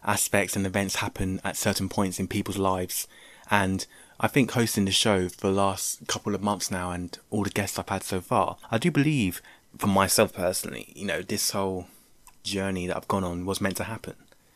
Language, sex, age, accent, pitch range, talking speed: English, male, 20-39, British, 95-110 Hz, 205 wpm